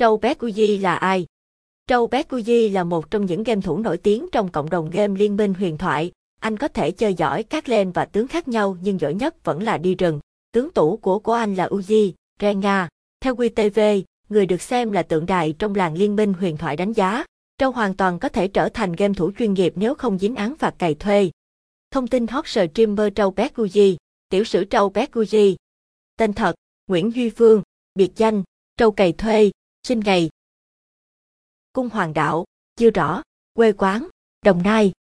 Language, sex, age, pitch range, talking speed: Vietnamese, female, 20-39, 185-225 Hz, 195 wpm